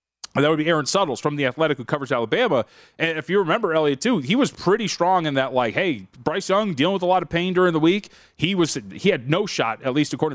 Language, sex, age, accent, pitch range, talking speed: English, male, 30-49, American, 135-180 Hz, 260 wpm